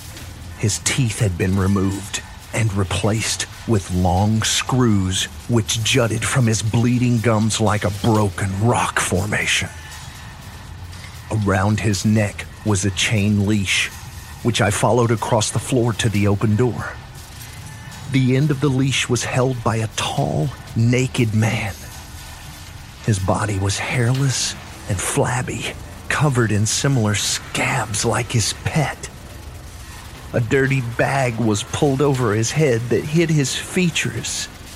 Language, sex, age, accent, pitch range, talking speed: English, male, 40-59, American, 100-120 Hz, 130 wpm